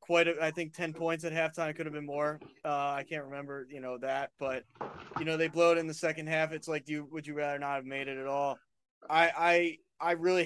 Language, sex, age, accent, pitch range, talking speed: English, male, 20-39, American, 140-165 Hz, 270 wpm